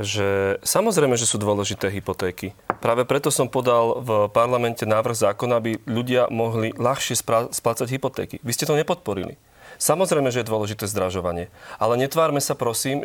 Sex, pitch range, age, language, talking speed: male, 120-150 Hz, 40-59, Slovak, 150 wpm